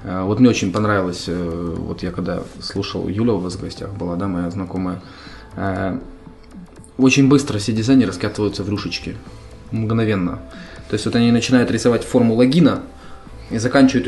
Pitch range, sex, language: 100-130 Hz, male, Ukrainian